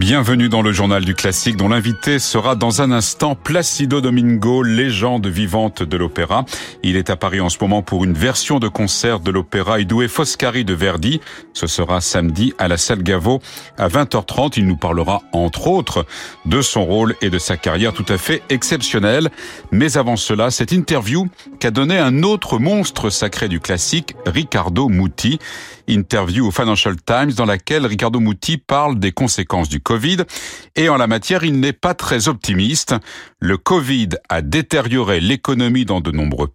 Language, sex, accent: French, male, French